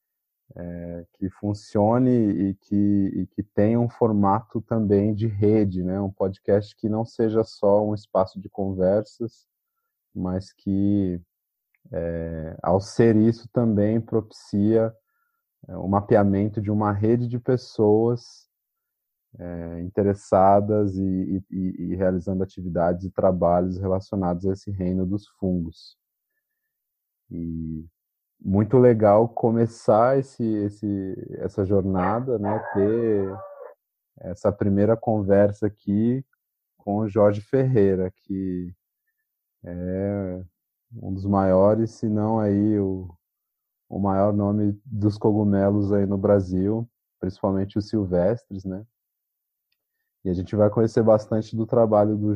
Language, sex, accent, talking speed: Portuguese, male, Brazilian, 115 wpm